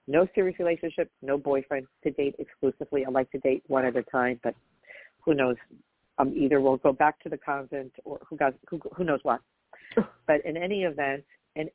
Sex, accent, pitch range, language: female, American, 140-170 Hz, English